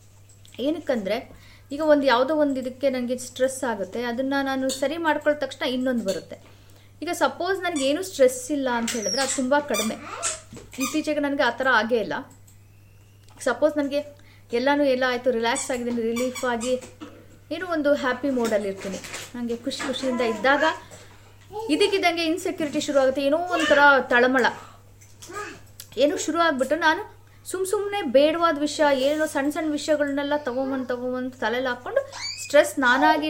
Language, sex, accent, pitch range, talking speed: Kannada, female, native, 235-300 Hz, 135 wpm